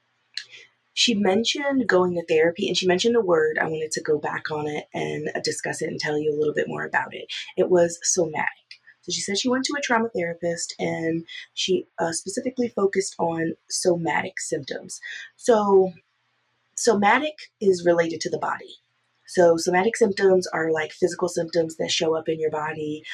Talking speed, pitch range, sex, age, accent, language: 180 wpm, 155-185 Hz, female, 30-49, American, English